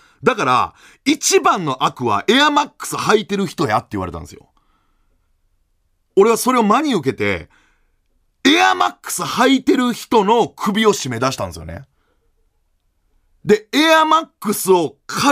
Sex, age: male, 30-49